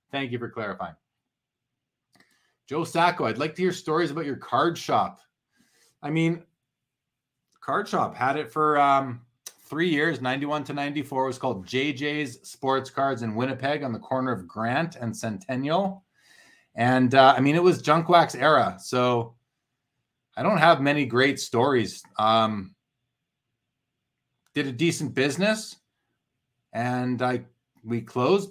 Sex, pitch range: male, 125-150 Hz